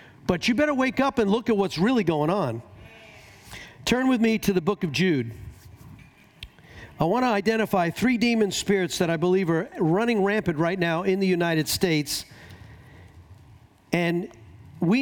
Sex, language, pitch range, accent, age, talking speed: male, English, 150-215 Hz, American, 50-69, 165 wpm